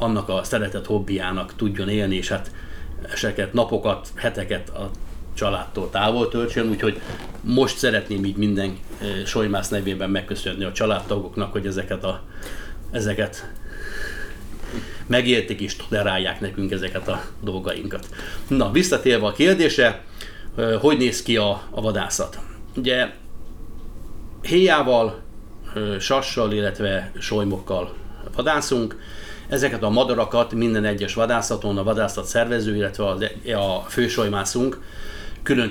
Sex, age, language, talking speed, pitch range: male, 30-49, Hungarian, 110 wpm, 100-115 Hz